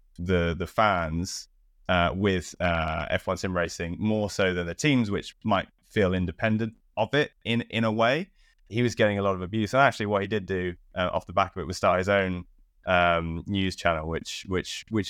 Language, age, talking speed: English, 20-39, 210 wpm